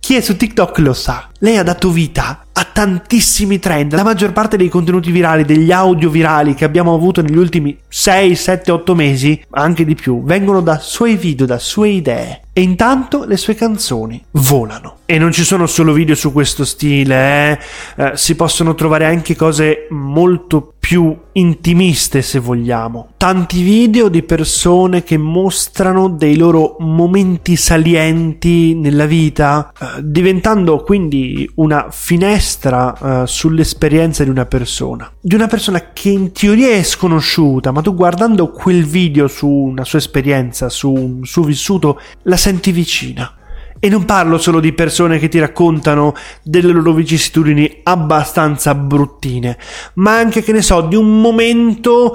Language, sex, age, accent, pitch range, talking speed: Italian, male, 30-49, native, 150-190 Hz, 160 wpm